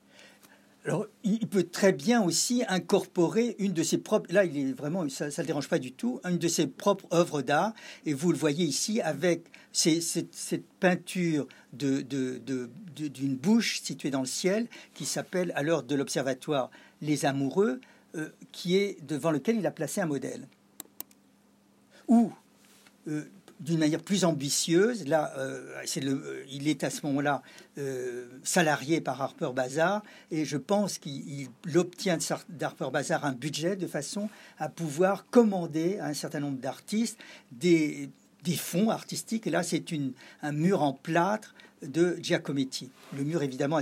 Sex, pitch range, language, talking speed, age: male, 145-185 Hz, French, 165 wpm, 60-79